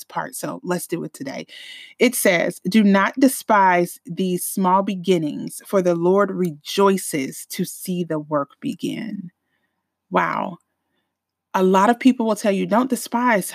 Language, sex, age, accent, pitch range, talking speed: English, female, 30-49, American, 180-235 Hz, 145 wpm